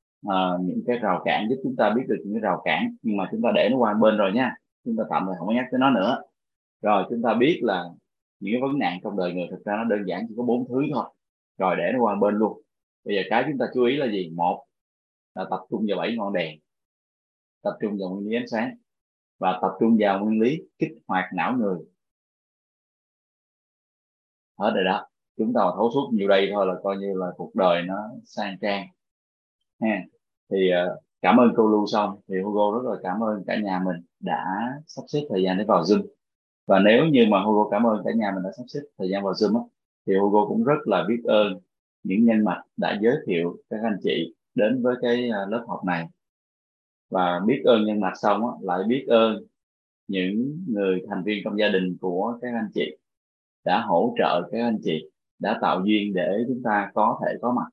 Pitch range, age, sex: 95-115 Hz, 20-39, male